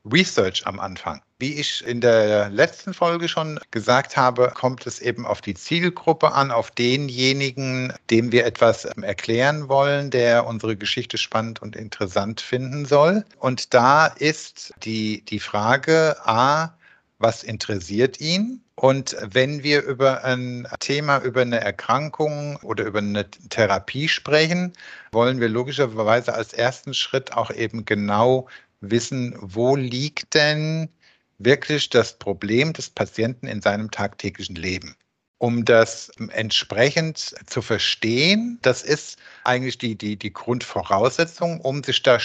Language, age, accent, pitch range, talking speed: German, 50-69, German, 115-150 Hz, 135 wpm